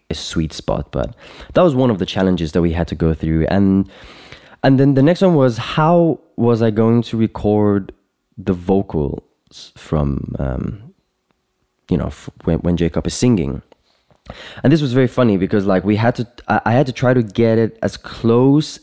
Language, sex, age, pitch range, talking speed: English, male, 20-39, 80-110 Hz, 190 wpm